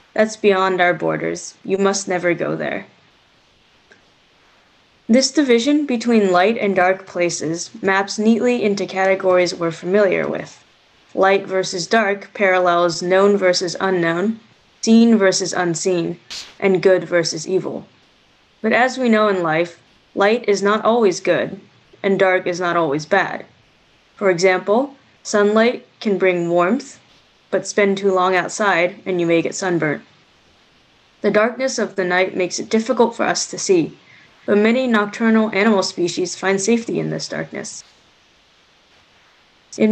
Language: English